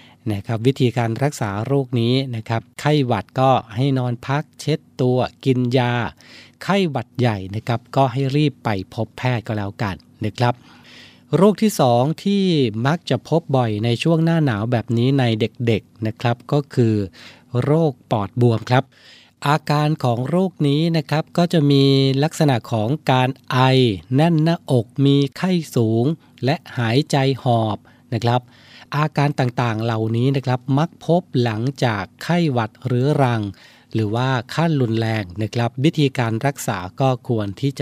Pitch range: 115-145 Hz